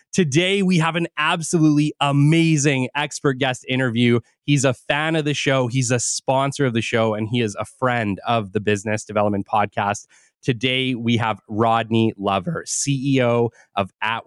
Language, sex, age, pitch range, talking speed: English, male, 20-39, 110-140 Hz, 165 wpm